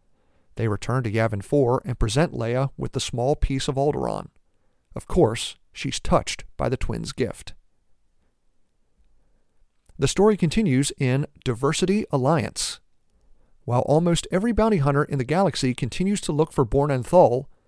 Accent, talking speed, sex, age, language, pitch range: American, 145 wpm, male, 50-69, English, 115-150 Hz